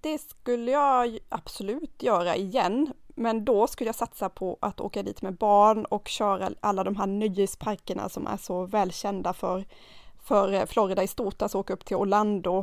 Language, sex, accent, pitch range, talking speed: Swedish, female, native, 200-240 Hz, 170 wpm